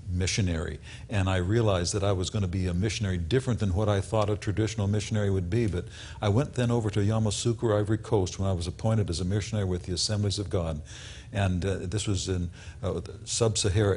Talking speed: 215 wpm